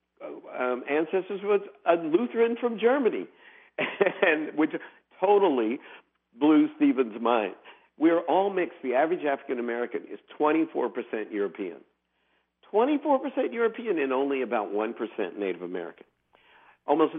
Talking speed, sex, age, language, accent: 110 wpm, male, 50-69, English, American